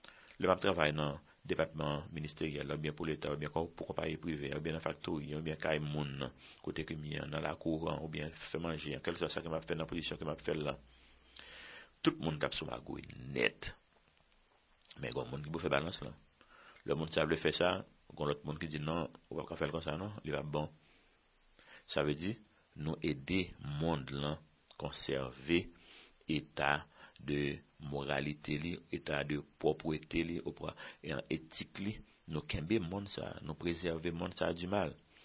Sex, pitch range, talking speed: male, 75-85 Hz, 195 wpm